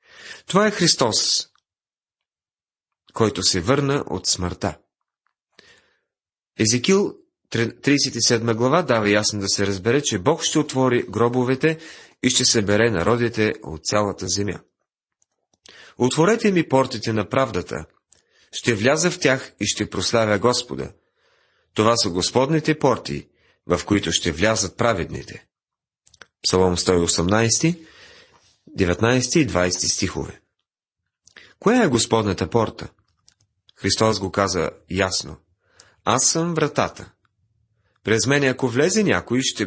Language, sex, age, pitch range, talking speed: Bulgarian, male, 40-59, 95-135 Hz, 110 wpm